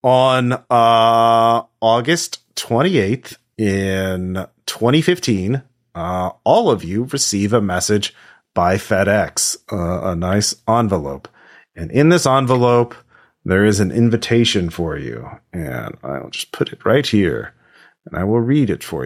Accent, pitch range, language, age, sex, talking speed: American, 100-125 Hz, English, 30-49, male, 130 wpm